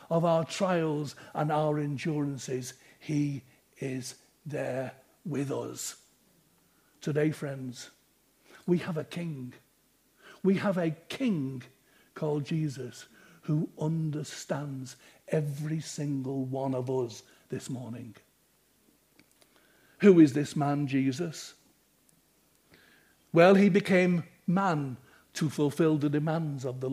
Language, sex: English, male